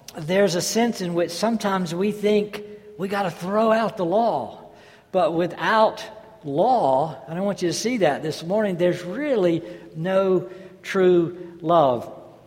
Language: English